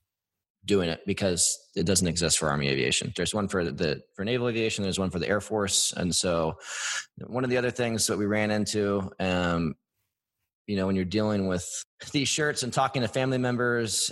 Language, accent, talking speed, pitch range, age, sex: English, American, 200 wpm, 90-105 Hz, 20-39, male